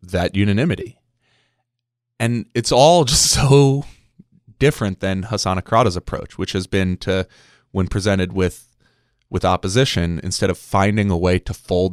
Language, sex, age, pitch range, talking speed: English, male, 20-39, 90-115 Hz, 140 wpm